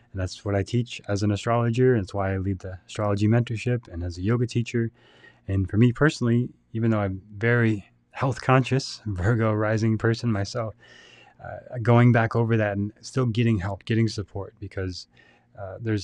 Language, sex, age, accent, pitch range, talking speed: English, male, 20-39, American, 100-120 Hz, 180 wpm